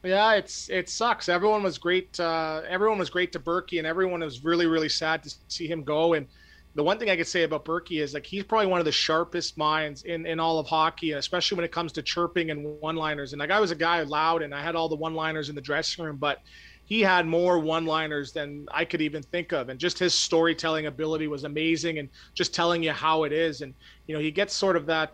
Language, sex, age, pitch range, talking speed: English, male, 30-49, 155-175 Hz, 255 wpm